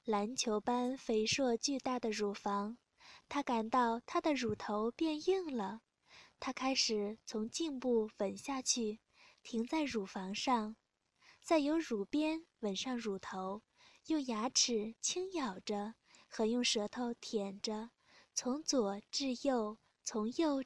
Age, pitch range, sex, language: 10-29, 220-300 Hz, female, Chinese